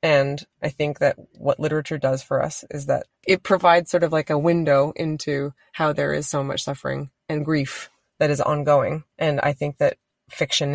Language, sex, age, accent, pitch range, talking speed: English, female, 20-39, American, 140-165 Hz, 195 wpm